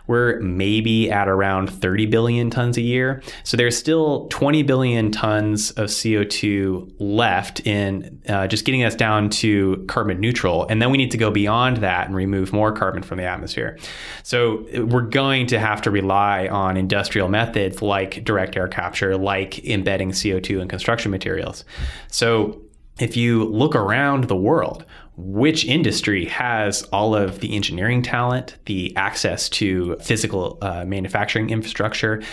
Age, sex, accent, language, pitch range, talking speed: 20-39, male, American, English, 95-115 Hz, 155 wpm